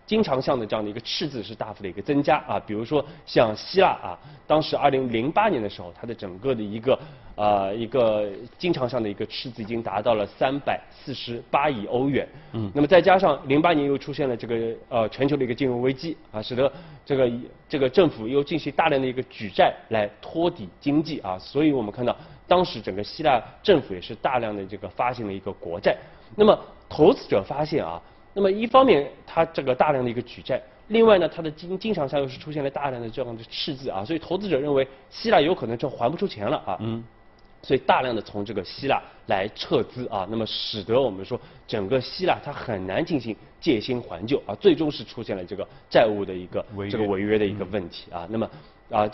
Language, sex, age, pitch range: Chinese, male, 20-39, 110-150 Hz